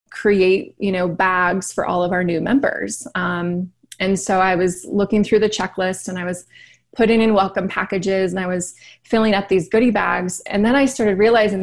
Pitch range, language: 190-225 Hz, English